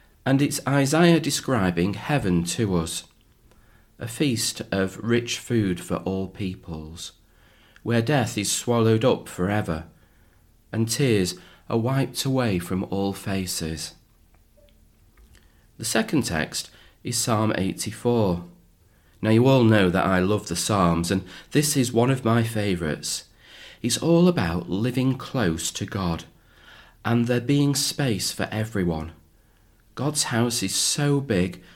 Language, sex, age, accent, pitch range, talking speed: English, male, 40-59, British, 85-125 Hz, 130 wpm